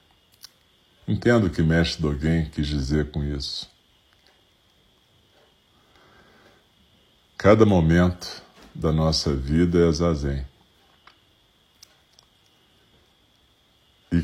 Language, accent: Portuguese, Brazilian